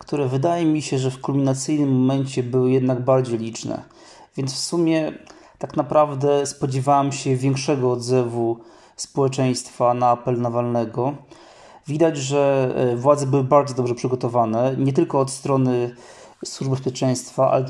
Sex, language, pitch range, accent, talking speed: male, Polish, 130-145 Hz, native, 130 wpm